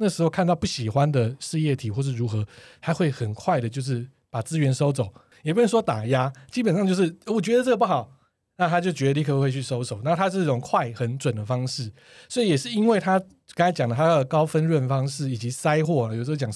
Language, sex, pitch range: Chinese, male, 125-170 Hz